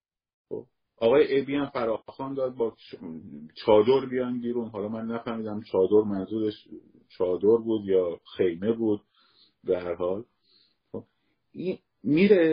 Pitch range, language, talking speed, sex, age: 110-145 Hz, Persian, 110 wpm, male, 50-69